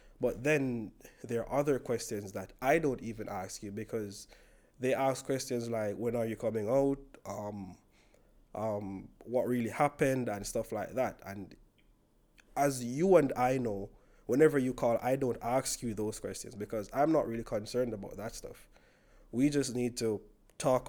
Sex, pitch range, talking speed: male, 105-130 Hz, 170 wpm